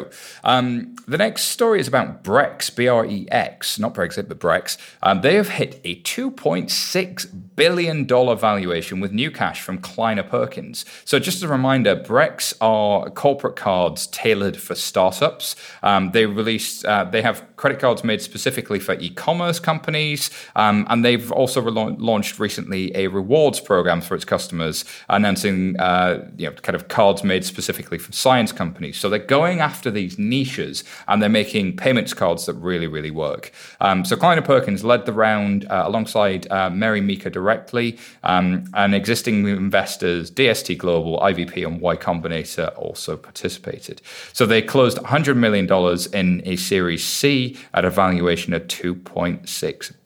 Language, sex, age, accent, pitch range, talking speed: English, male, 30-49, British, 90-125 Hz, 155 wpm